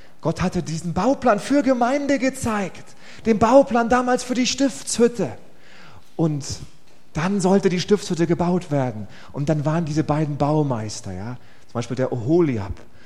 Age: 30-49